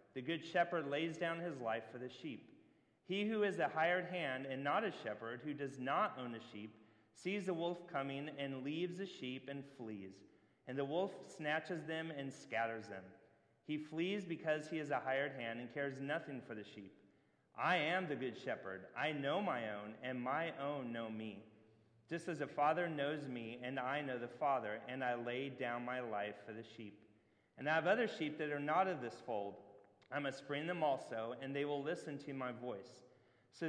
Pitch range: 115-155 Hz